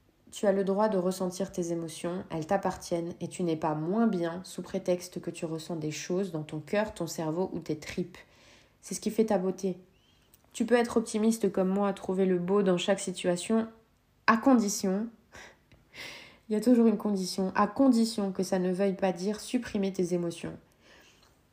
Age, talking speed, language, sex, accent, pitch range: 20-39, 190 wpm, French, female, French, 175-205 Hz